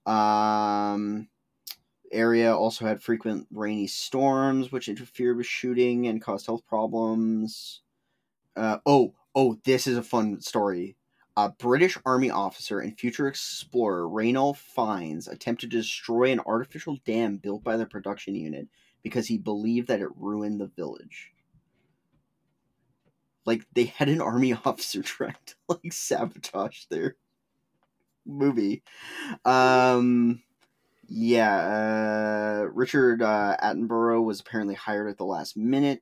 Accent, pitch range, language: American, 105-125 Hz, English